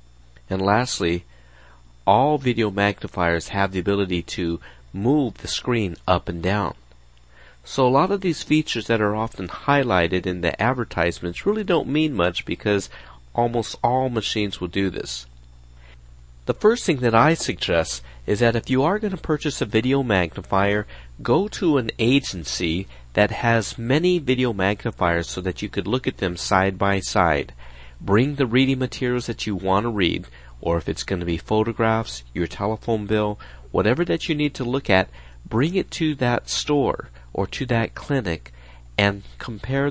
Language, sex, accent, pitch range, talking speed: English, male, American, 85-125 Hz, 170 wpm